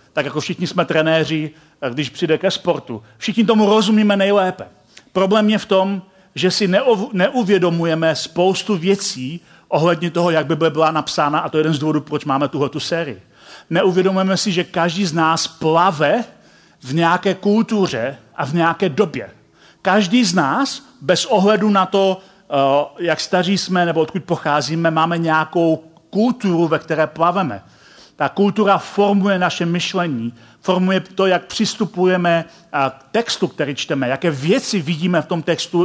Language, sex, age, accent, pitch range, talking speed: Czech, male, 40-59, native, 155-195 Hz, 150 wpm